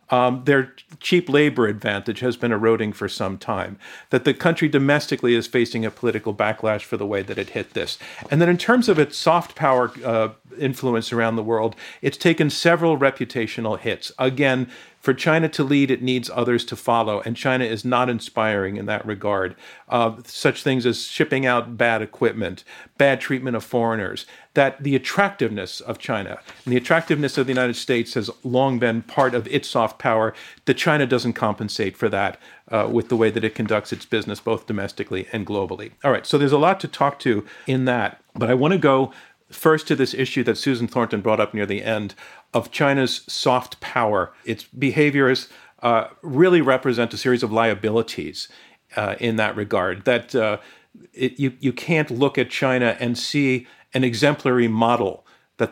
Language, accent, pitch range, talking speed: English, American, 115-135 Hz, 185 wpm